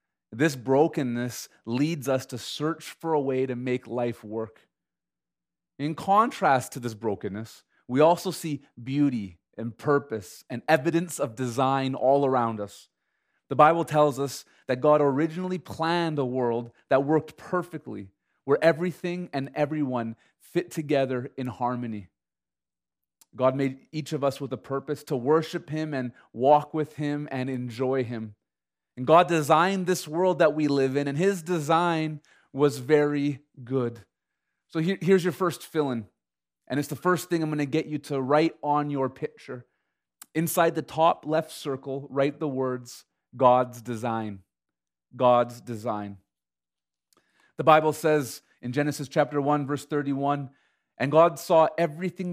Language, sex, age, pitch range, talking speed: English, male, 30-49, 120-160 Hz, 150 wpm